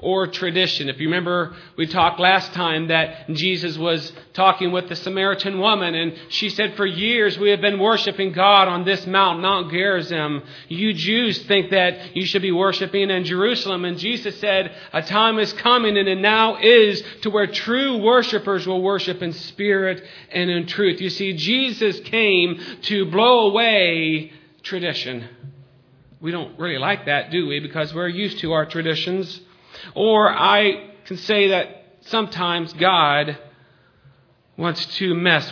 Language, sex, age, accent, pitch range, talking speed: English, male, 40-59, American, 165-195 Hz, 160 wpm